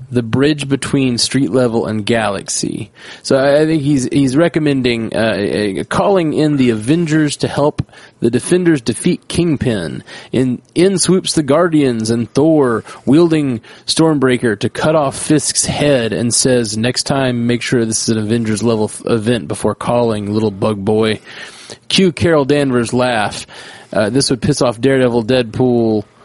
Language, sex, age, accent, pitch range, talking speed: English, male, 20-39, American, 115-140 Hz, 155 wpm